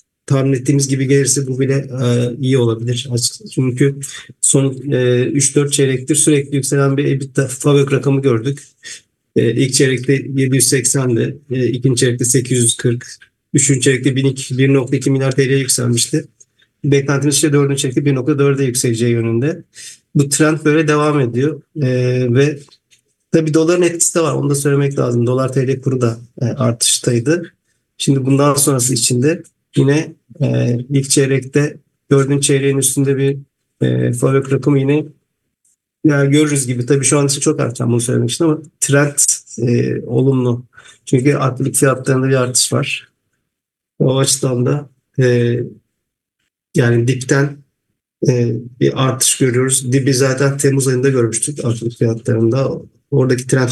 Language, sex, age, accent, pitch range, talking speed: English, male, 50-69, Turkish, 125-145 Hz, 135 wpm